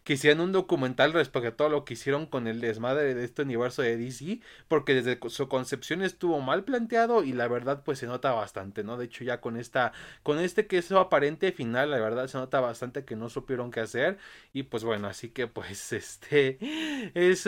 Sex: male